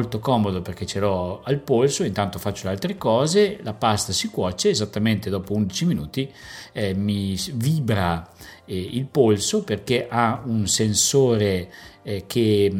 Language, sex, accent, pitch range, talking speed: Italian, male, native, 100-125 Hz, 145 wpm